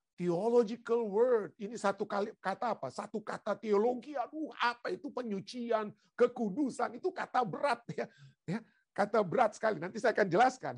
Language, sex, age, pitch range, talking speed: Indonesian, male, 50-69, 175-240 Hz, 150 wpm